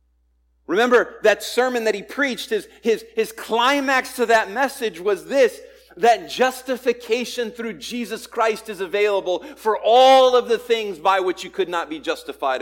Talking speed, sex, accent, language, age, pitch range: 155 wpm, male, American, English, 40-59, 150-240 Hz